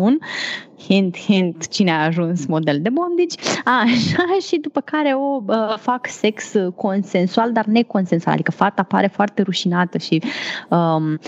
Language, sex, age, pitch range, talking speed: Romanian, female, 20-39, 185-240 Hz, 145 wpm